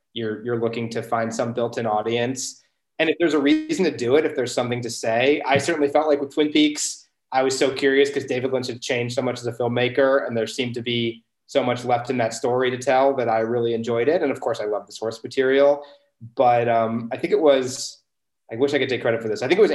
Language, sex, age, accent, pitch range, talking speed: English, male, 20-39, American, 115-135 Hz, 260 wpm